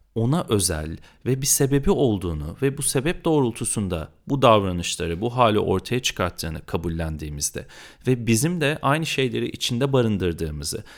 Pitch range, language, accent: 95-125 Hz, Turkish, native